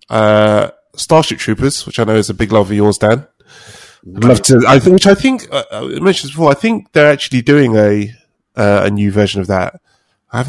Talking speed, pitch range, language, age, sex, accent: 225 wpm, 100-125 Hz, English, 20-39, male, British